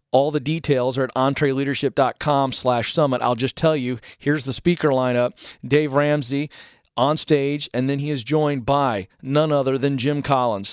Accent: American